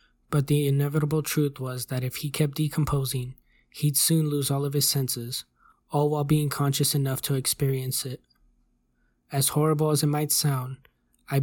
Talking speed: 170 wpm